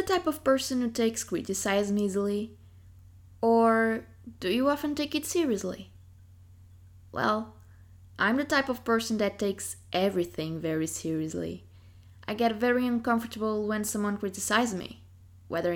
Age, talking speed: 20-39, 130 wpm